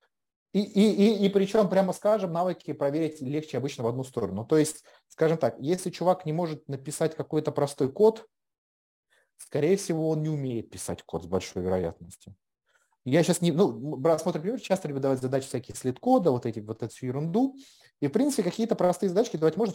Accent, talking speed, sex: native, 185 wpm, male